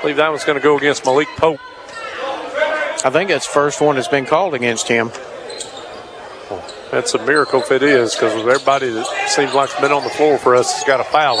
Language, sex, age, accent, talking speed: English, male, 50-69, American, 230 wpm